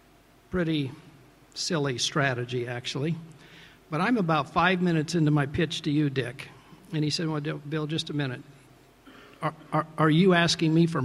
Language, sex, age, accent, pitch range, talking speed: English, male, 50-69, American, 140-165 Hz, 165 wpm